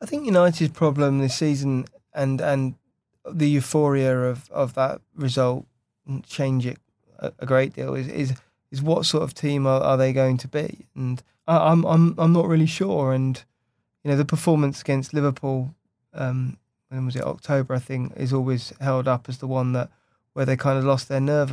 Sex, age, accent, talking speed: male, 20-39, British, 195 wpm